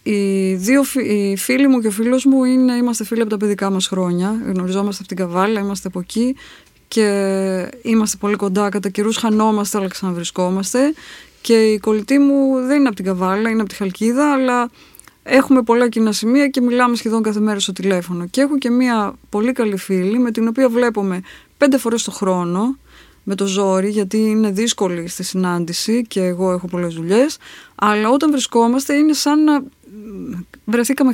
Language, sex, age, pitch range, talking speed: Greek, female, 20-39, 195-255 Hz, 180 wpm